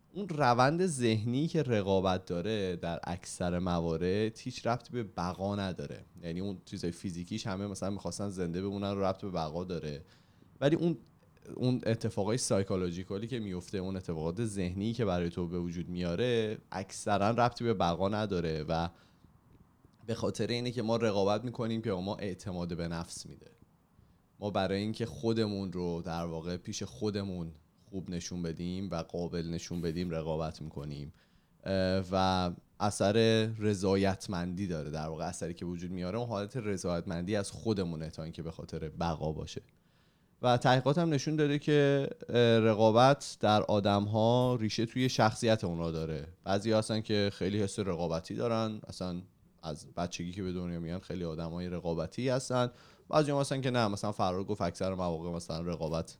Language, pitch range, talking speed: Persian, 85-110 Hz, 155 wpm